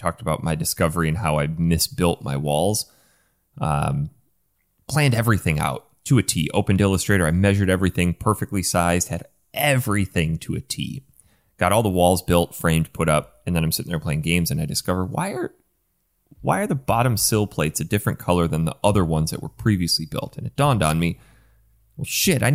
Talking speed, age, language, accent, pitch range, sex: 195 wpm, 30-49, English, American, 85-130 Hz, male